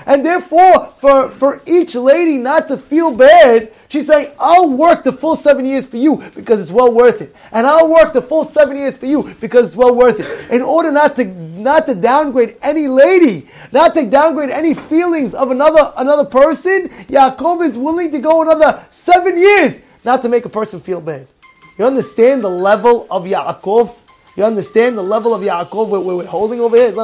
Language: English